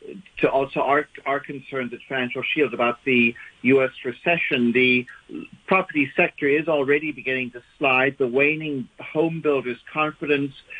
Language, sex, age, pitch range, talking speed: English, male, 60-79, 130-155 Hz, 140 wpm